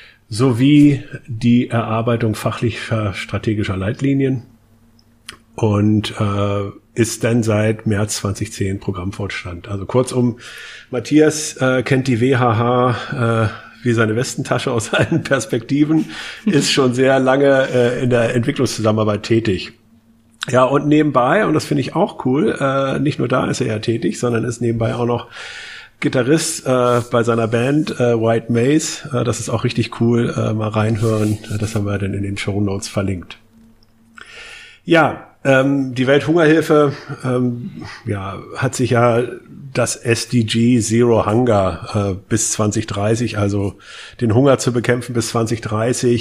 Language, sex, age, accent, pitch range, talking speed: German, male, 50-69, German, 110-130 Hz, 140 wpm